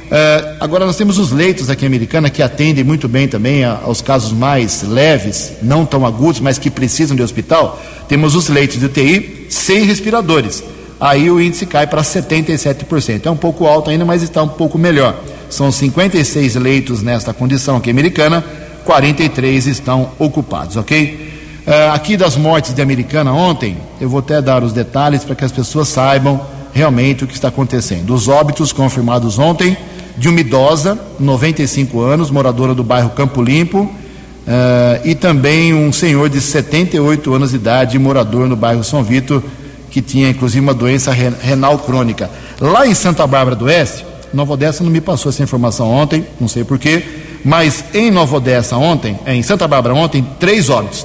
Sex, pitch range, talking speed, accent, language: male, 130-160 Hz, 170 wpm, Brazilian, Portuguese